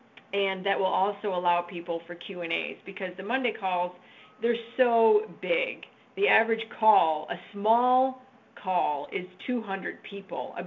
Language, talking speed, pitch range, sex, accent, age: English, 140 wpm, 180-215 Hz, female, American, 40-59